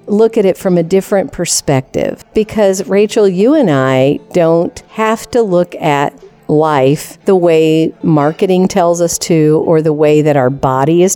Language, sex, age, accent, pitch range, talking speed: English, female, 50-69, American, 155-210 Hz, 165 wpm